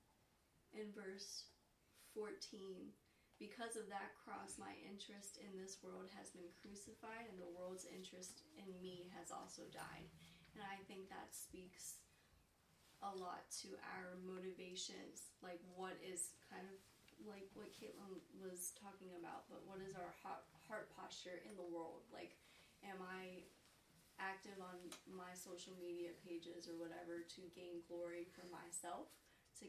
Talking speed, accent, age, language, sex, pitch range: 145 wpm, American, 20-39, English, female, 170-190 Hz